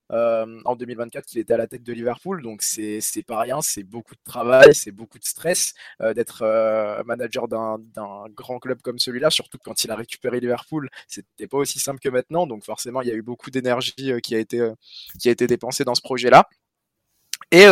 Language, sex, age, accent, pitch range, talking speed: French, male, 20-39, French, 120-135 Hz, 225 wpm